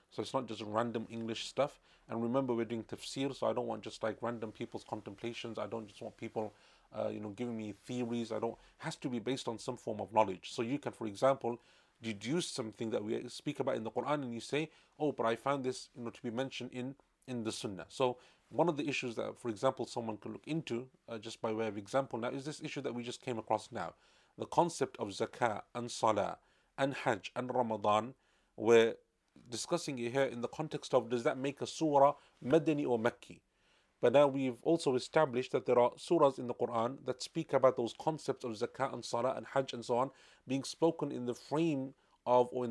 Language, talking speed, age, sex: English, 230 wpm, 30-49, male